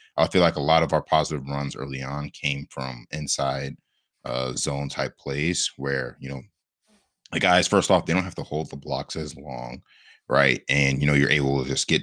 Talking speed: 215 wpm